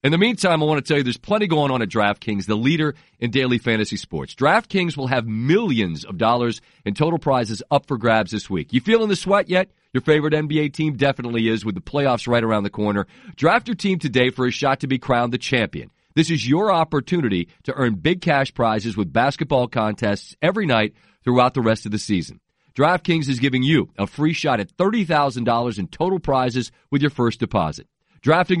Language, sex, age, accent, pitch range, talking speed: English, male, 40-59, American, 120-160 Hz, 210 wpm